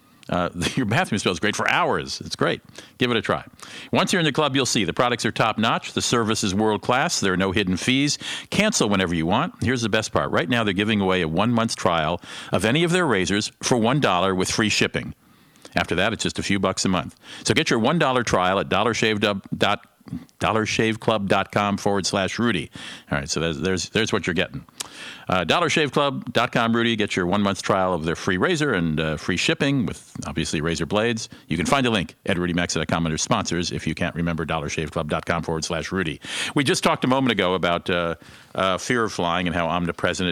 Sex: male